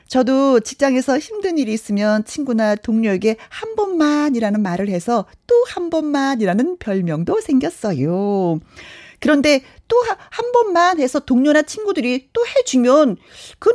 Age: 40-59